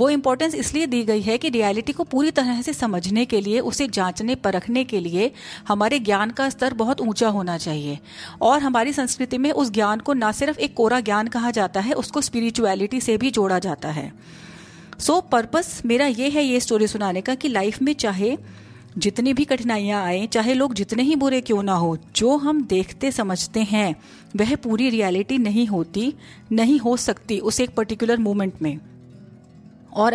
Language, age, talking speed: Hindi, 40-59, 190 wpm